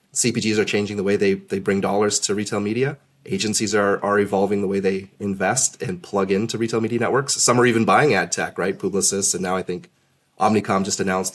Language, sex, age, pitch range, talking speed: English, male, 30-49, 95-115 Hz, 215 wpm